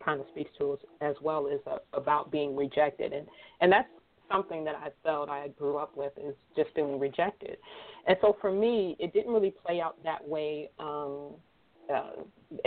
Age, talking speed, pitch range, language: 40-59, 185 wpm, 150-185 Hz, English